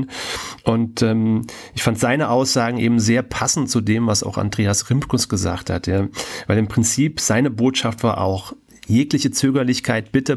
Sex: male